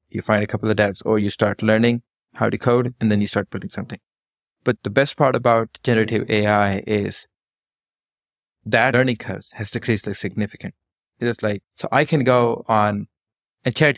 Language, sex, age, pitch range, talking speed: English, male, 20-39, 105-120 Hz, 190 wpm